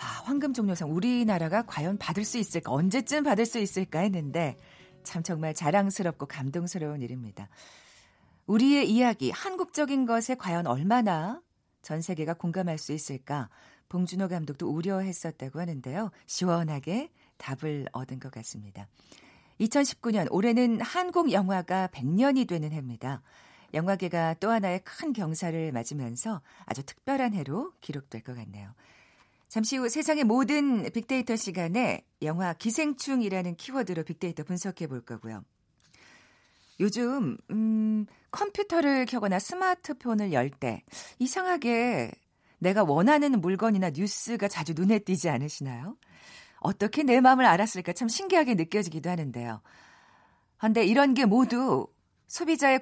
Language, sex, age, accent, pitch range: Korean, female, 40-59, native, 160-240 Hz